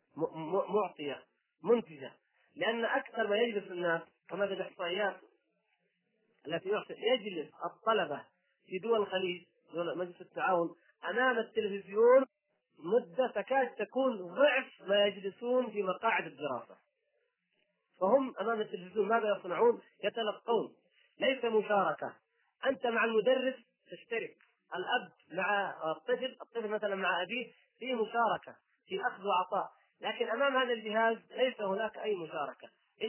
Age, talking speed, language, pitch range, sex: 30-49, 110 wpm, Arabic, 200-255 Hz, male